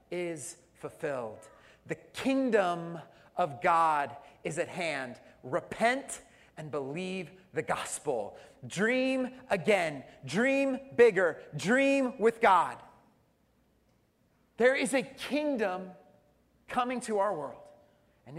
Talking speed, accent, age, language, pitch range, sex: 100 wpm, American, 30-49, English, 150-240 Hz, male